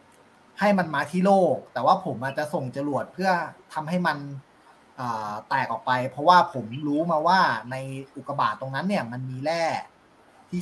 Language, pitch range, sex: Thai, 130-175 Hz, male